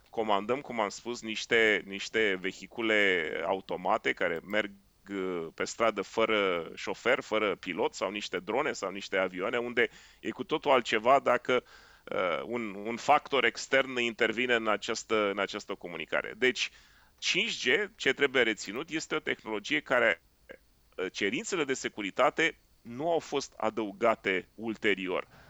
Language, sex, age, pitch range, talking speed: Romanian, male, 30-49, 105-135 Hz, 125 wpm